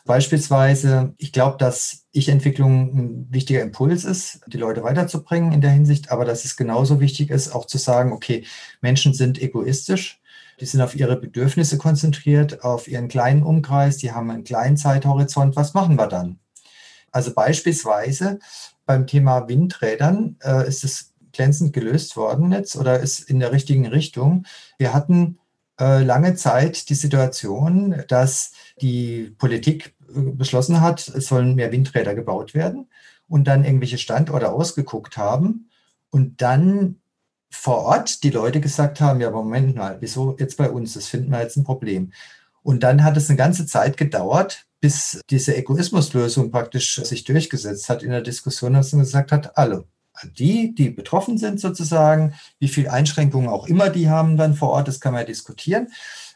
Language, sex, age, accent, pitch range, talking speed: German, male, 40-59, German, 125-155 Hz, 165 wpm